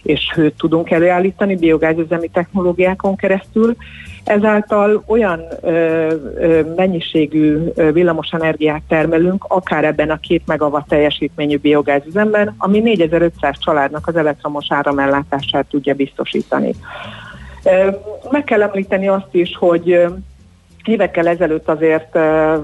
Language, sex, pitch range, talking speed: Hungarian, female, 145-170 Hz, 105 wpm